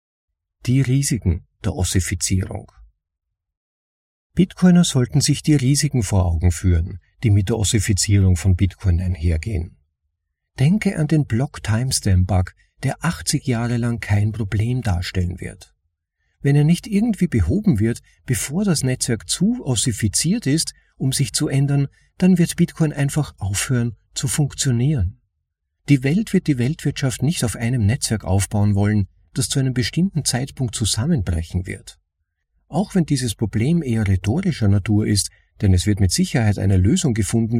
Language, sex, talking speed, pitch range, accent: German, male, 140 wpm, 95-140 Hz, German